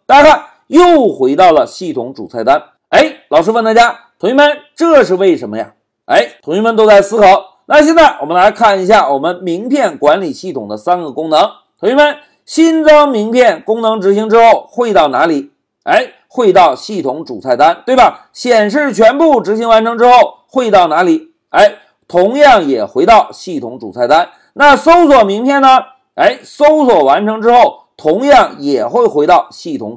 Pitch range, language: 210-295 Hz, Chinese